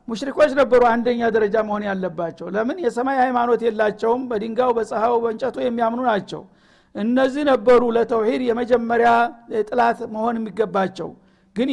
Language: Amharic